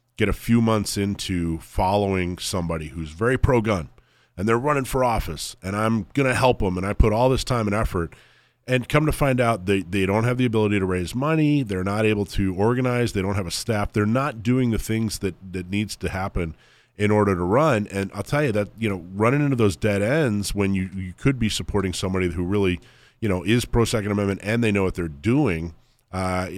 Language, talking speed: English, 225 wpm